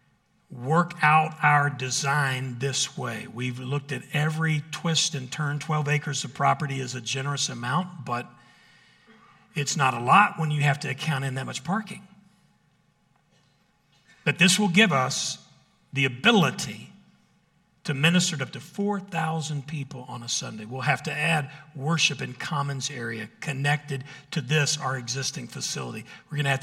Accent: American